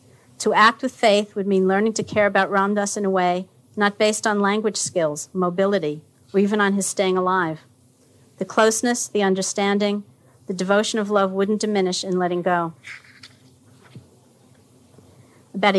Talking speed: 150 wpm